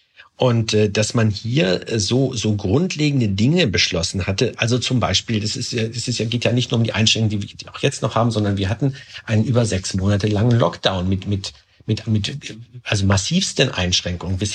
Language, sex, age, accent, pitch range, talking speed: German, male, 50-69, German, 100-120 Hz, 200 wpm